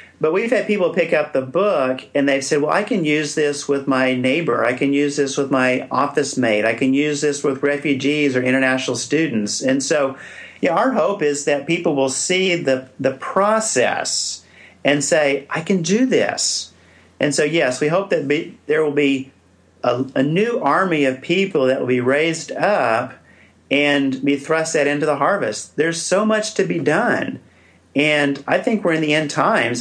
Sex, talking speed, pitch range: male, 195 wpm, 135-180 Hz